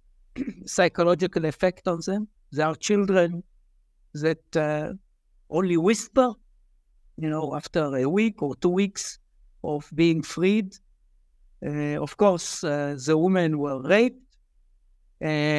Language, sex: English, male